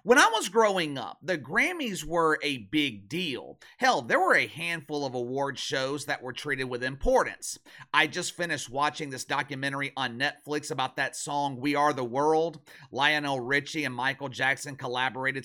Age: 30-49